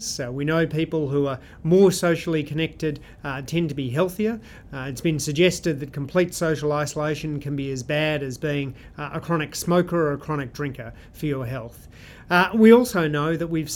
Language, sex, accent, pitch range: English, male, Australian, 145-180 Hz